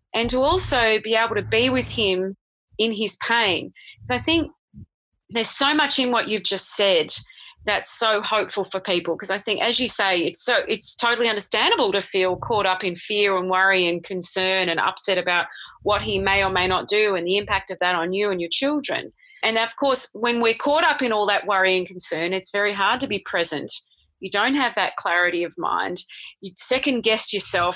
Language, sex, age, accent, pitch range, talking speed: English, female, 30-49, Australian, 185-230 Hz, 215 wpm